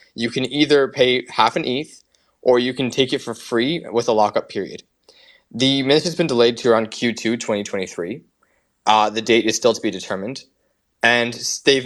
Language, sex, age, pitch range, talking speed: English, male, 20-39, 110-145 Hz, 185 wpm